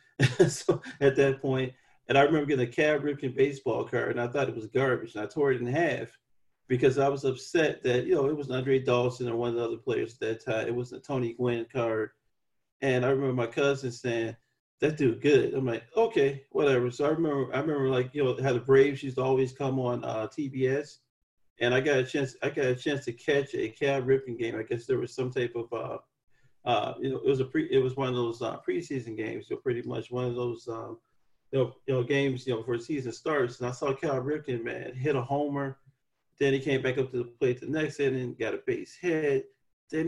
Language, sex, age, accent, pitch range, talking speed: English, male, 40-59, American, 125-145 Hz, 245 wpm